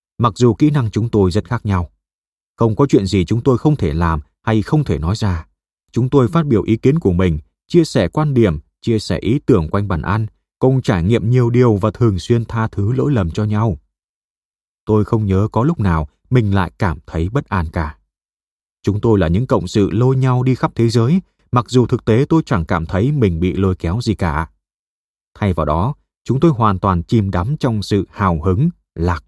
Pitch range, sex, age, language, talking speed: 90-120 Hz, male, 20-39, Vietnamese, 225 wpm